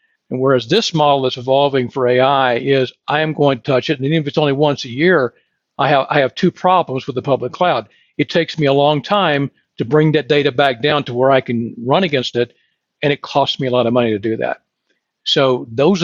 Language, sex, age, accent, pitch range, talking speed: English, male, 50-69, American, 135-165 Hz, 245 wpm